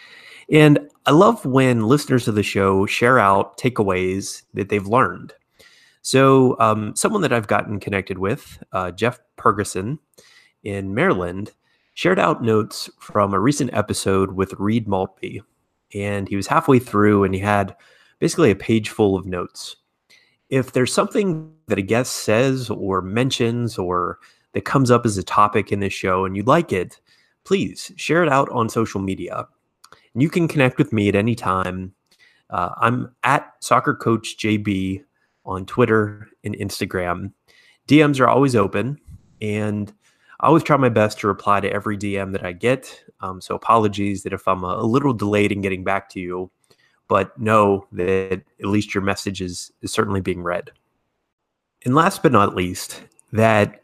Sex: male